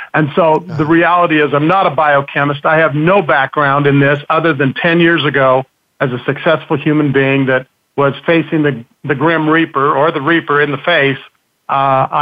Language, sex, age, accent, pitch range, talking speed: English, male, 50-69, American, 135-155 Hz, 190 wpm